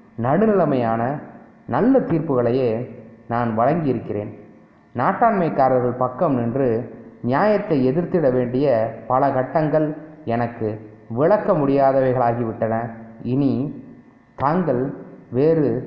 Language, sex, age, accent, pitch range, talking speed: Tamil, male, 30-49, native, 120-160 Hz, 70 wpm